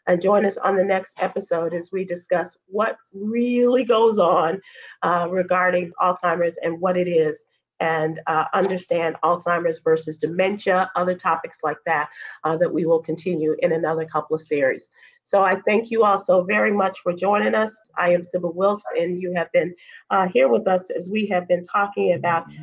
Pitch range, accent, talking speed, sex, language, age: 160-185 Hz, American, 185 wpm, female, English, 40-59